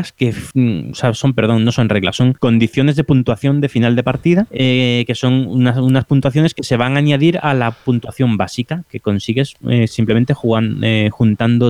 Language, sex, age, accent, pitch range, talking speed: Spanish, male, 20-39, Spanish, 110-145 Hz, 195 wpm